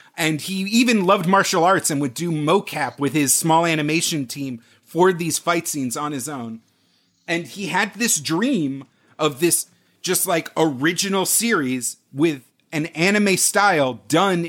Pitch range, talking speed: 135-180 Hz, 155 wpm